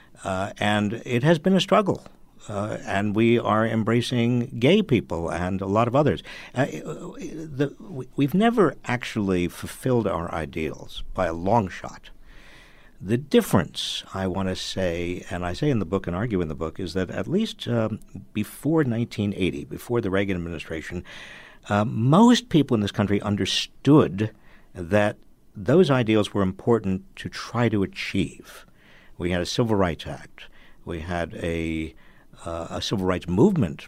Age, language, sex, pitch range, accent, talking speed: 60-79, English, male, 90-120 Hz, American, 155 wpm